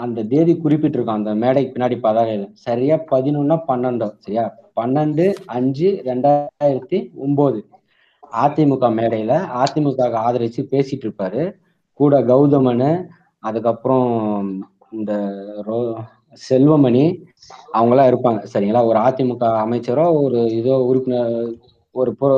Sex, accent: male, native